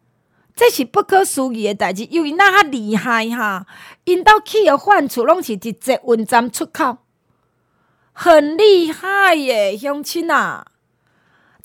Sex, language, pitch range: female, Chinese, 225-355 Hz